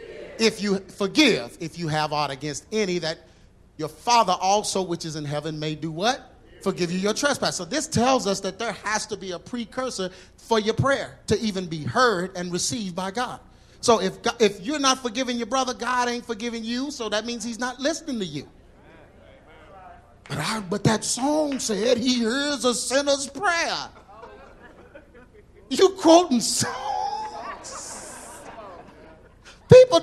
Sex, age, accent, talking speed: male, 40-59, American, 165 wpm